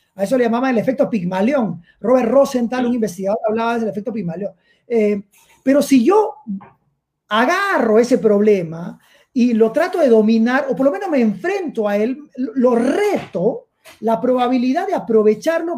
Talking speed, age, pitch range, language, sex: 155 wpm, 30-49, 215-275 Hz, Spanish, male